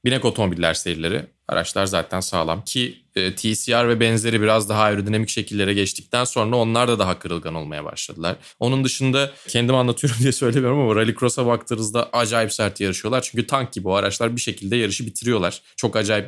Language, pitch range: Turkish, 100-140 Hz